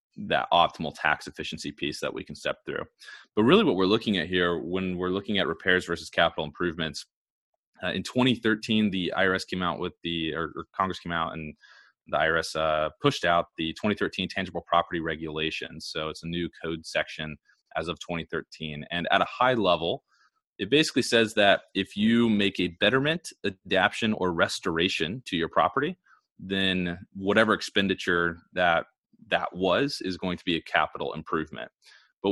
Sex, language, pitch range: male, English, 85-105 Hz